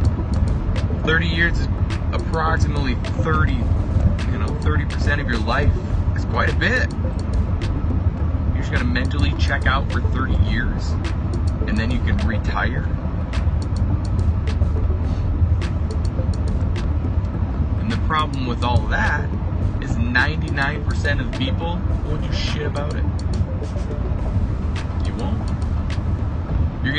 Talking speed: 110 wpm